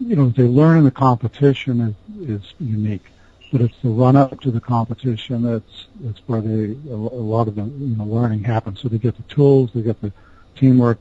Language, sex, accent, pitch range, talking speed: English, male, American, 110-125 Hz, 190 wpm